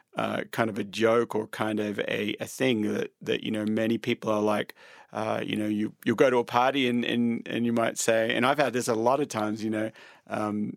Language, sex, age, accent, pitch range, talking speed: English, male, 30-49, Australian, 110-130 Hz, 250 wpm